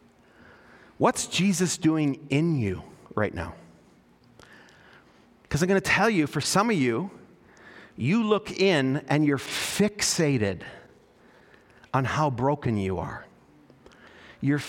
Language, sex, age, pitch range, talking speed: English, male, 40-59, 145-230 Hz, 120 wpm